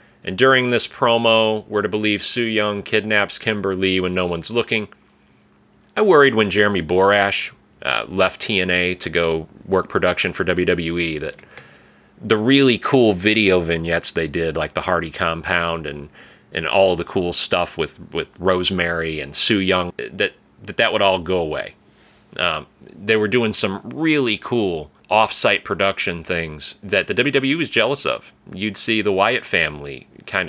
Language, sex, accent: English, male, American